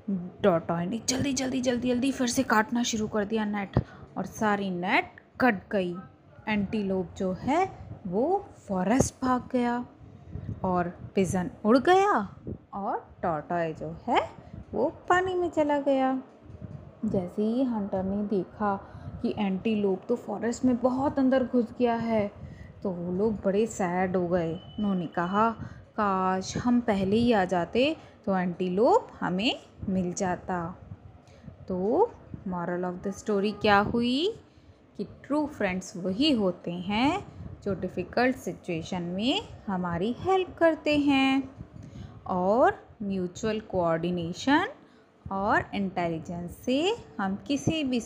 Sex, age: female, 20-39